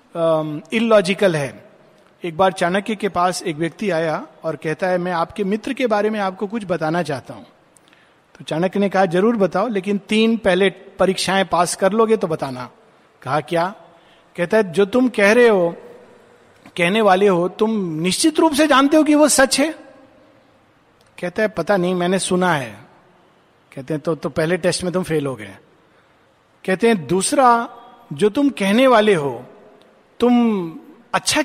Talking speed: 170 wpm